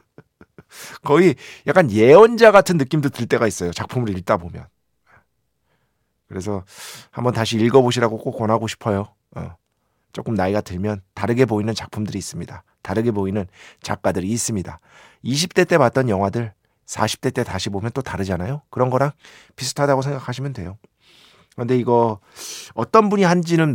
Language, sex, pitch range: Korean, male, 100-140 Hz